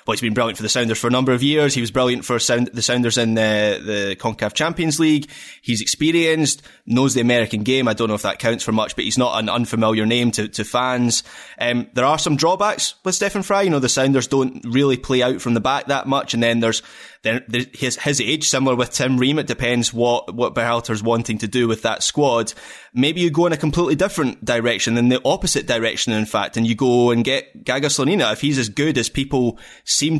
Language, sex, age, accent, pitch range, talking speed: English, male, 20-39, British, 115-135 Hz, 235 wpm